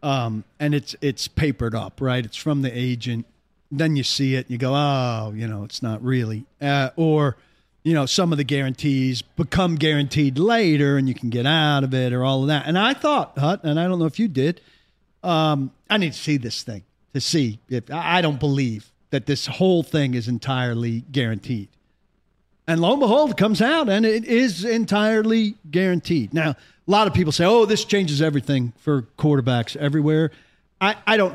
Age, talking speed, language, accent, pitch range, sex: 50-69, 200 wpm, English, American, 125-170 Hz, male